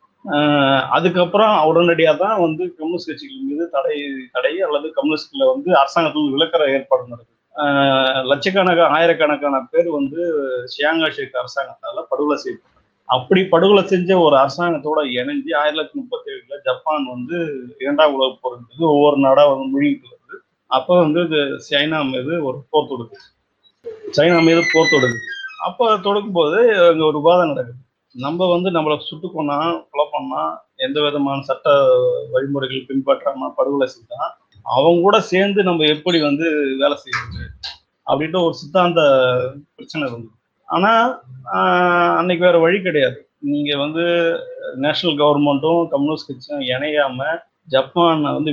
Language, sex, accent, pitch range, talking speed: Tamil, male, native, 140-180 Hz, 125 wpm